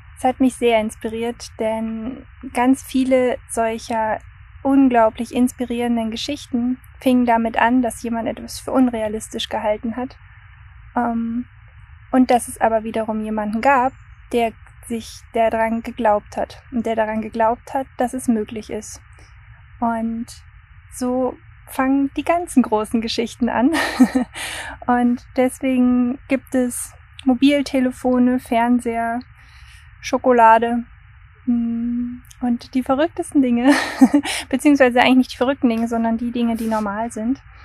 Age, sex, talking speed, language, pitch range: 20-39, female, 120 wpm, German, 225-255 Hz